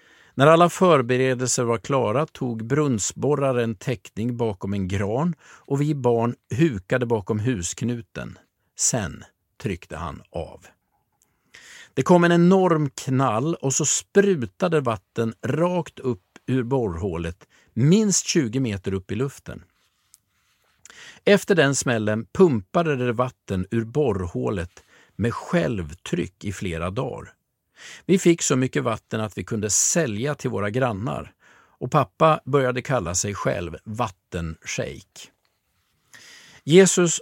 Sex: male